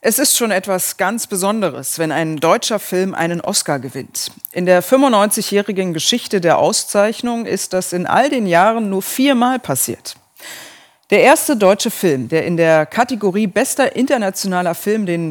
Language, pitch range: German, 175-240 Hz